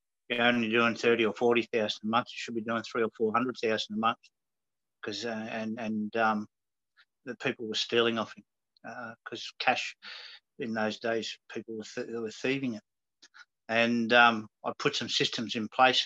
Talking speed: 195 wpm